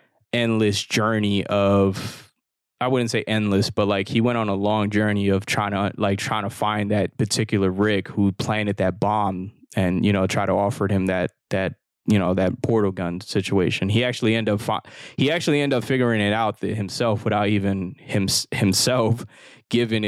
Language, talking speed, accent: English, 180 wpm, American